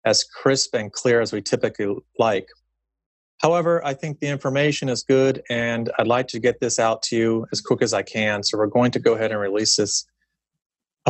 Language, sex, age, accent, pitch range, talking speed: English, male, 30-49, American, 115-135 Hz, 210 wpm